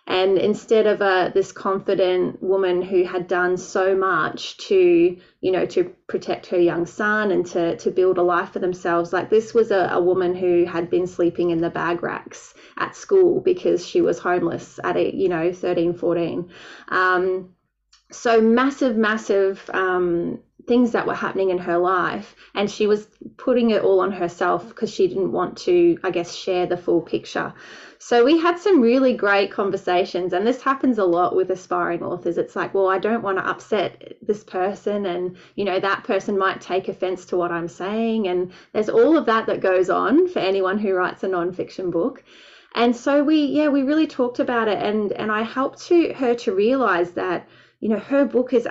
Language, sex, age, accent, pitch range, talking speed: English, female, 20-39, Australian, 180-240 Hz, 200 wpm